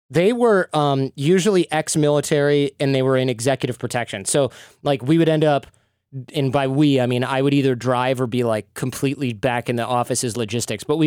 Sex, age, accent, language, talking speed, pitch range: male, 20-39, American, English, 200 wpm, 120-145 Hz